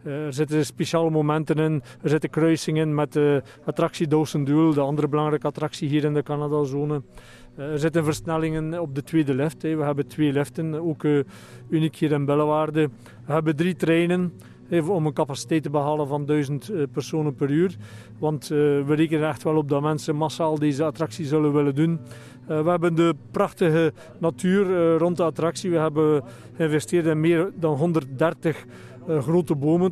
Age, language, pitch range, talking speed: 40-59, Dutch, 145-165 Hz, 160 wpm